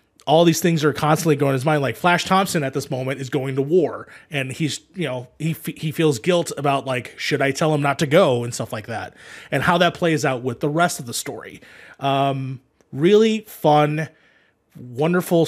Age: 30-49